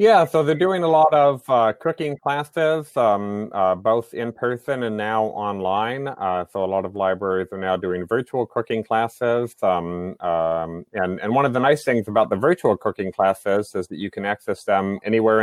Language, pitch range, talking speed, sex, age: English, 95-115 Hz, 200 wpm, male, 30-49